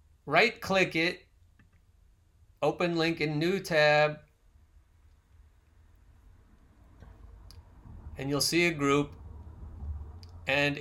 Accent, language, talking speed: American, English, 80 wpm